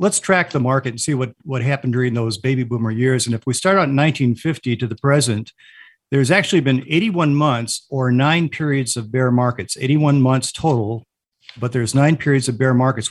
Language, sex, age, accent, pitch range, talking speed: English, male, 50-69, American, 120-150 Hz, 205 wpm